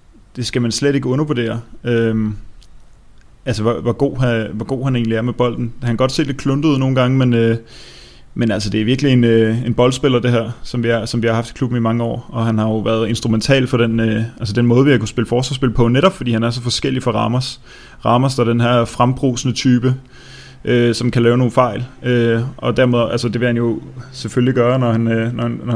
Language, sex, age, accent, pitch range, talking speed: Danish, male, 20-39, native, 115-125 Hz, 225 wpm